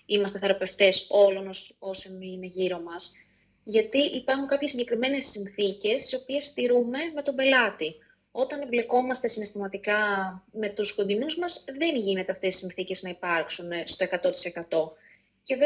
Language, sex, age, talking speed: Greek, female, 20-39, 140 wpm